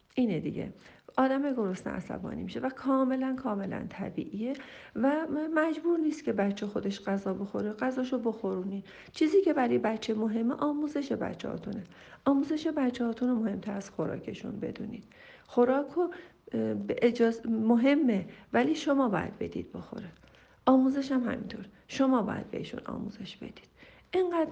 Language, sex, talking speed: Persian, female, 130 wpm